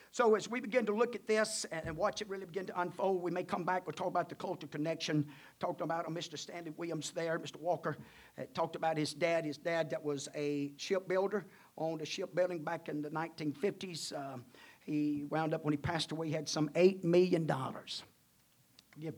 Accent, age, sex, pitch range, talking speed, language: American, 50-69, male, 150-185 Hz, 205 wpm, English